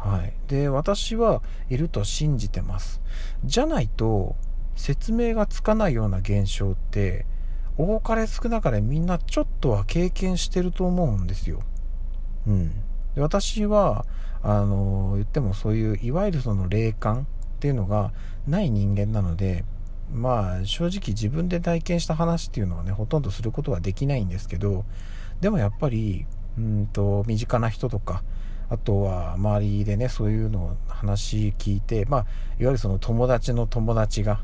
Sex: male